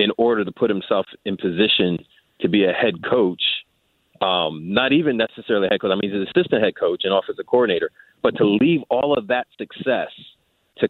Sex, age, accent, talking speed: male, 40-59, American, 205 wpm